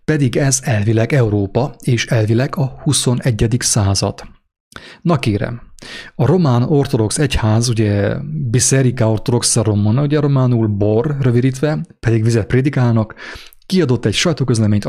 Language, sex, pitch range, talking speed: English, male, 110-130 Hz, 120 wpm